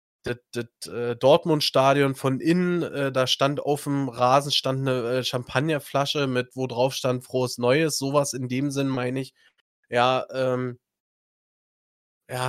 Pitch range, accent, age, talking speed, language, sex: 120-135 Hz, German, 20-39, 150 wpm, German, male